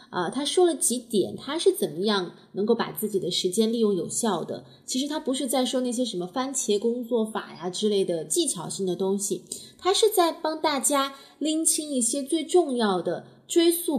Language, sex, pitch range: Chinese, female, 190-280 Hz